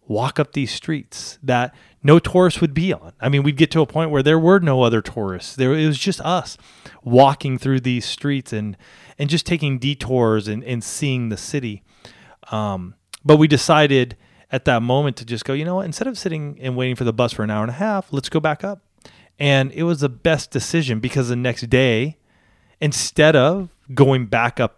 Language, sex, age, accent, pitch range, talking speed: English, male, 30-49, American, 115-145 Hz, 215 wpm